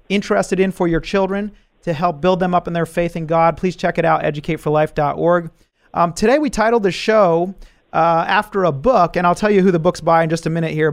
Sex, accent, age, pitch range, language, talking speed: male, American, 30-49, 155-185 Hz, English, 230 wpm